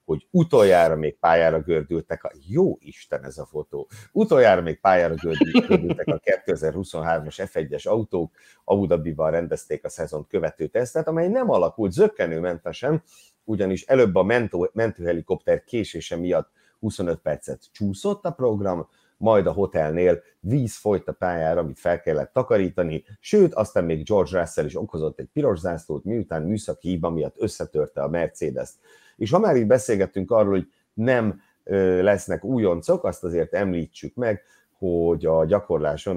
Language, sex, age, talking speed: Hungarian, male, 60-79, 145 wpm